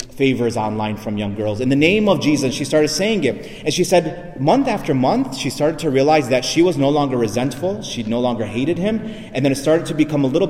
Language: English